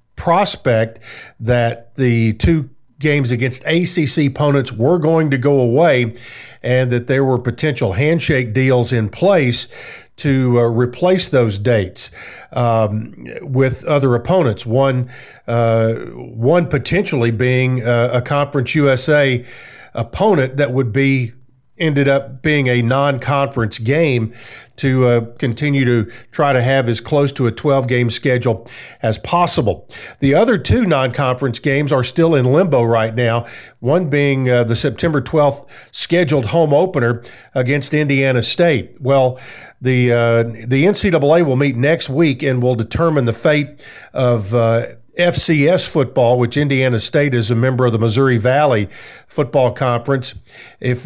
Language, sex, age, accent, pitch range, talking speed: English, male, 50-69, American, 120-145 Hz, 140 wpm